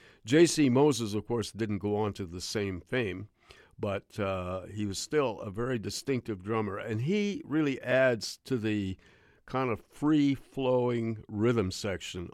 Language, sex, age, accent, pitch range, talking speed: English, male, 50-69, American, 95-120 Hz, 150 wpm